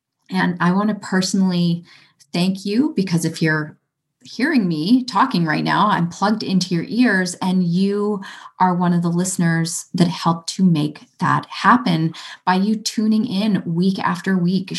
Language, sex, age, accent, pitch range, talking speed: English, female, 30-49, American, 165-215 Hz, 160 wpm